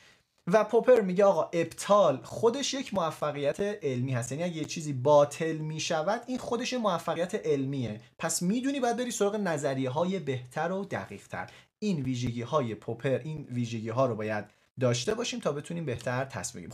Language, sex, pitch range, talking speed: Persian, male, 130-200 Hz, 170 wpm